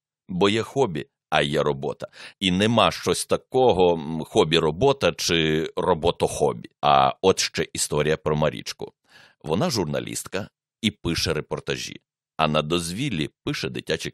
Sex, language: male, Ukrainian